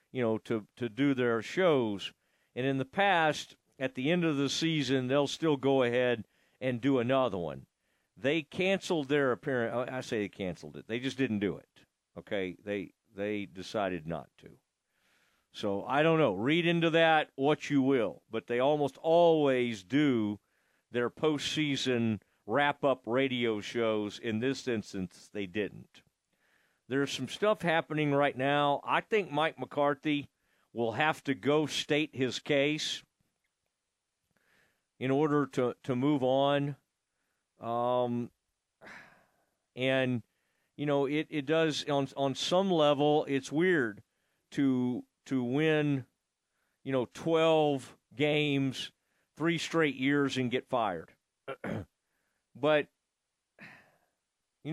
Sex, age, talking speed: male, 50-69, 135 wpm